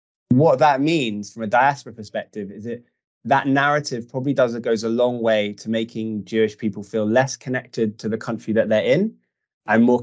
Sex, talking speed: male, 195 wpm